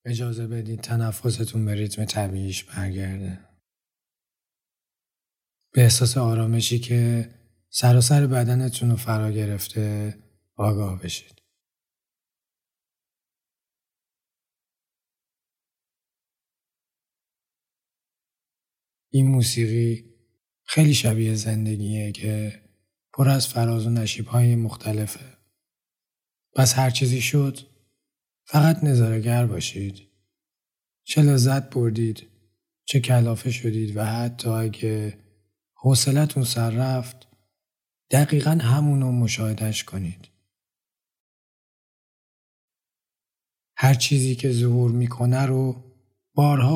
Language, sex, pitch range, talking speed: Persian, male, 105-125 Hz, 75 wpm